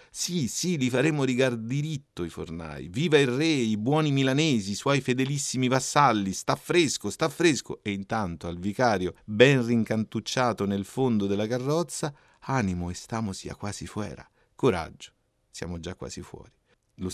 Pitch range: 100-130 Hz